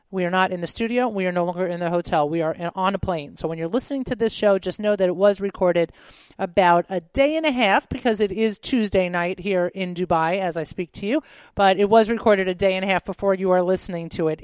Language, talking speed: English, 270 wpm